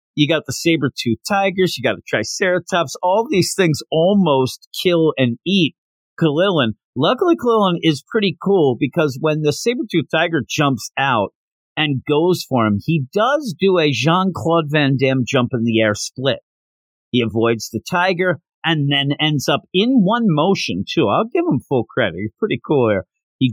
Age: 50-69